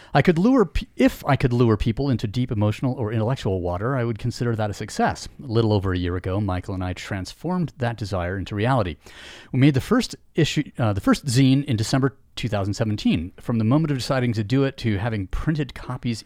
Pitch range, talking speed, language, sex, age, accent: 100-135 Hz, 215 wpm, English, male, 40-59, American